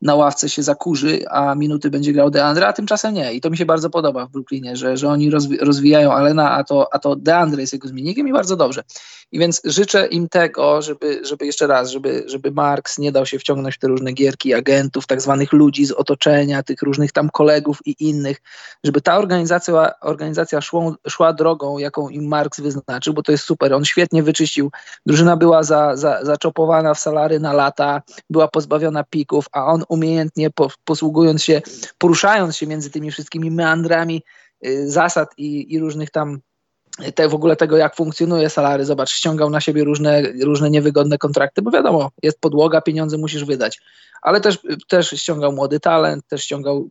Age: 20-39